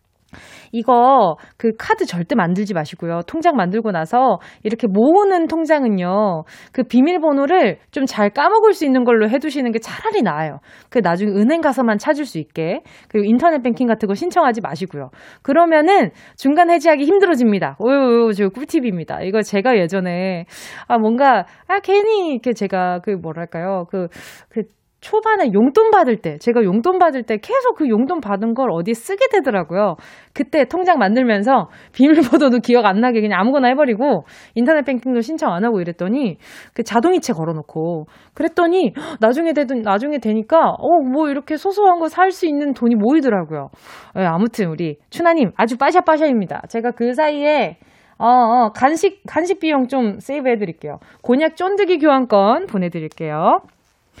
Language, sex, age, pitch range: Korean, female, 20-39, 205-310 Hz